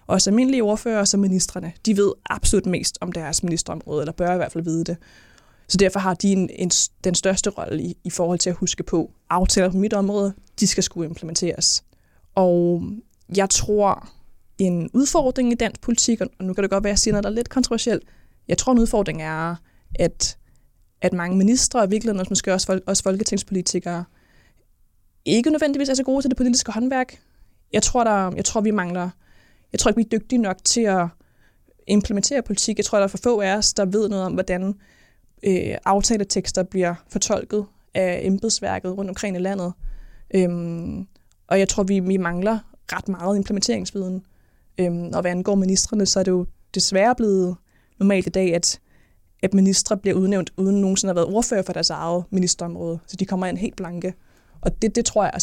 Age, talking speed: 20-39, 190 wpm